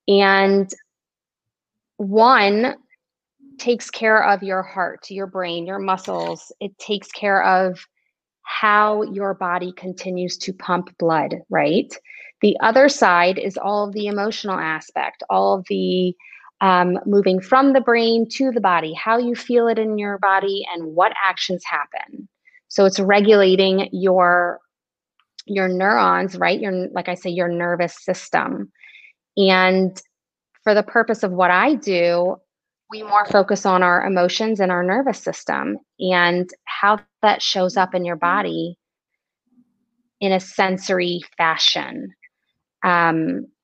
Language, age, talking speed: English, 30-49, 135 wpm